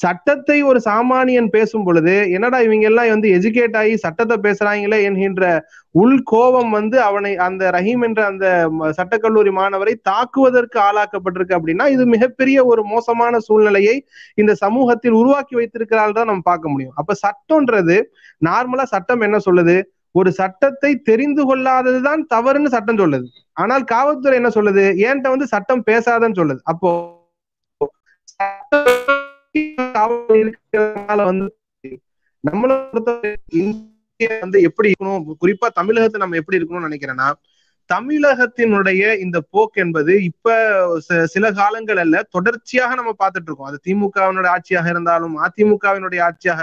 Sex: male